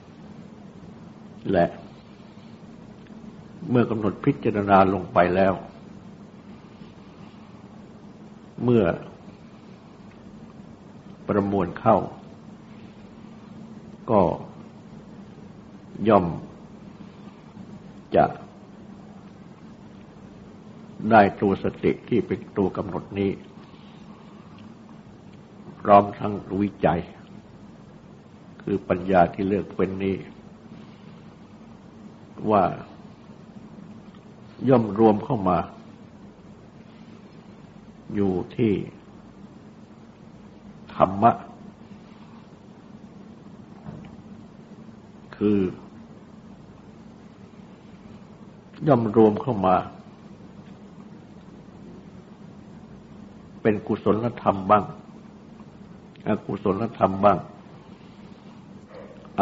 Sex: male